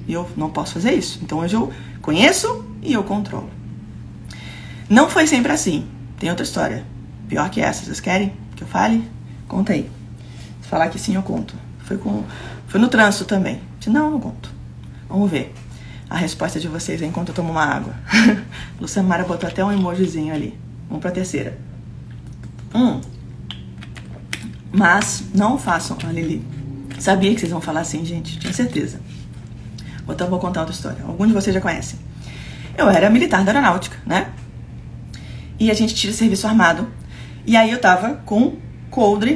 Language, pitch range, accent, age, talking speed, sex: Portuguese, 155-230 Hz, Brazilian, 20-39, 170 wpm, female